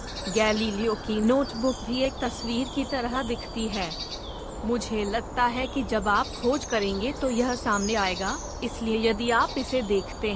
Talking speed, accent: 155 wpm, native